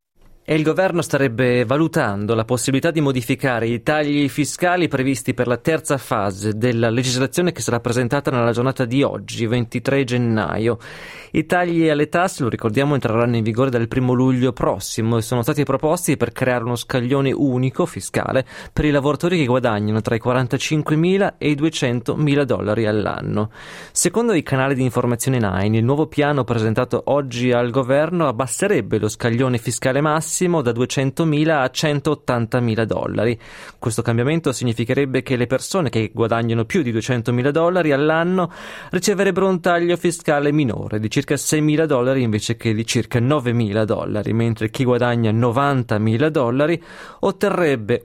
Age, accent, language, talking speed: 20-39, native, Italian, 150 wpm